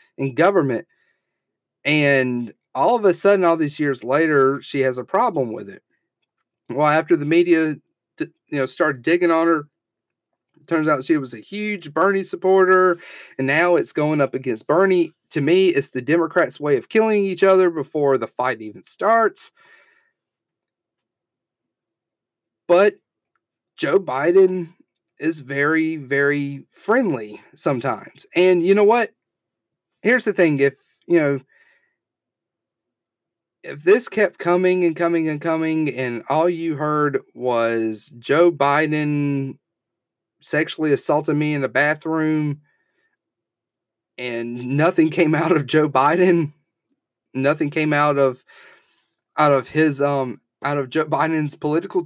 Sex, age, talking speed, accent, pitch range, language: male, 30-49, 135 wpm, American, 140-180 Hz, English